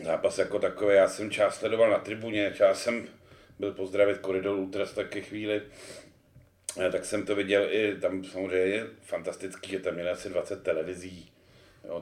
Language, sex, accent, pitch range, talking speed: Czech, male, native, 95-100 Hz, 160 wpm